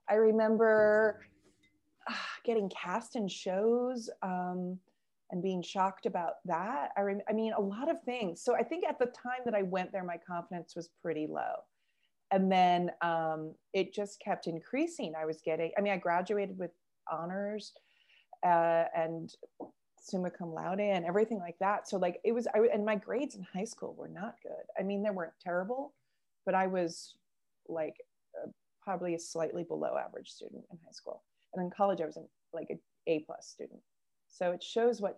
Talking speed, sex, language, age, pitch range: 185 wpm, female, English, 30-49, 165-210 Hz